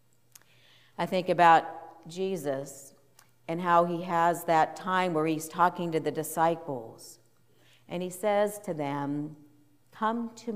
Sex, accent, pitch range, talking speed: female, American, 145-175 Hz, 130 wpm